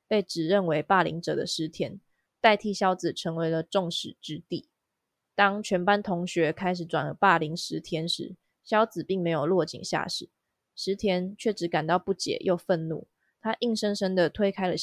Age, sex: 20-39, female